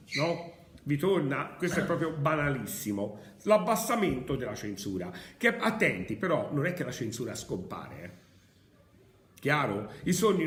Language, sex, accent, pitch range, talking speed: Italian, male, native, 110-180 Hz, 130 wpm